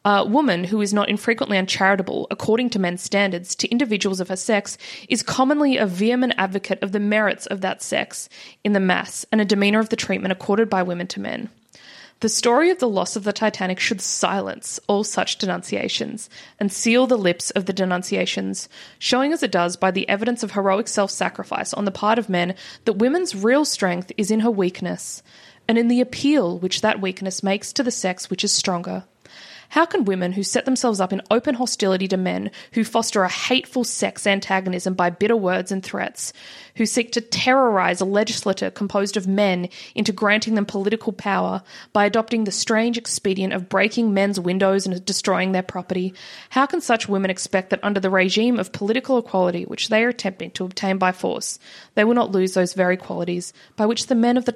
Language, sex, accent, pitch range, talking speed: English, female, Australian, 185-230 Hz, 200 wpm